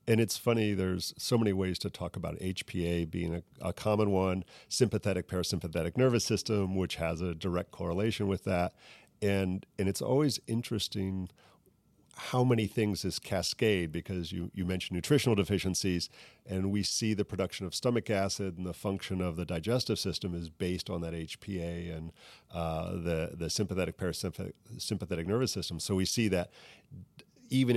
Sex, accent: male, American